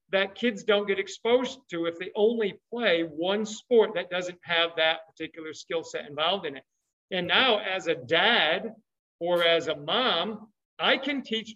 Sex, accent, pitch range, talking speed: male, American, 165-220 Hz, 175 wpm